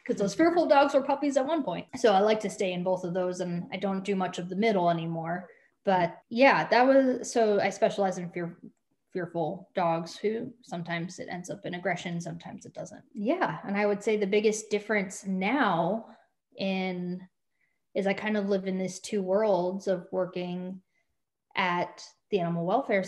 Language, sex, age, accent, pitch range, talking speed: English, female, 10-29, American, 180-215 Hz, 185 wpm